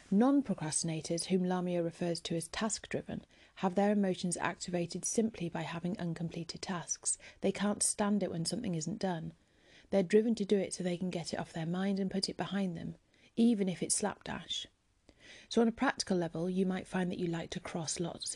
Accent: British